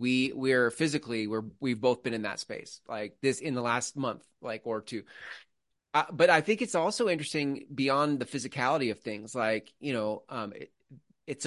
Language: English